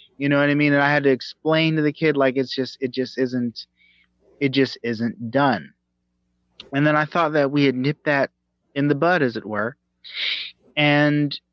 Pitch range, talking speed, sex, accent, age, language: 115-145 Hz, 205 wpm, male, American, 30-49, English